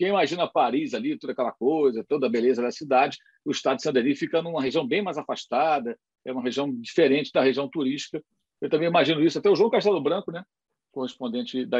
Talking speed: 210 wpm